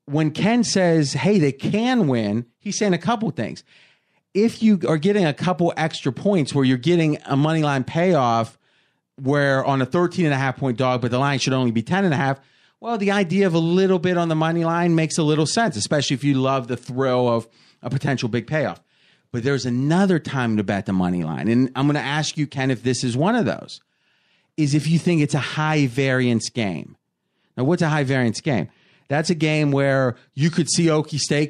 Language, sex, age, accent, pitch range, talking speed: English, male, 30-49, American, 135-175 Hz, 210 wpm